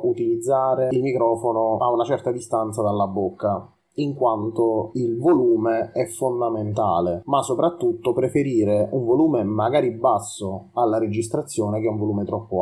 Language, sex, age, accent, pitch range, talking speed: Italian, male, 30-49, native, 105-135 Hz, 135 wpm